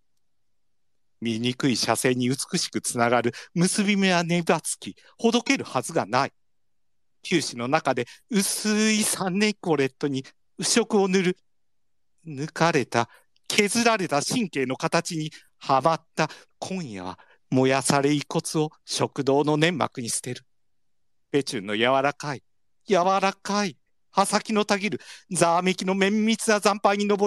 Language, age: Japanese, 50-69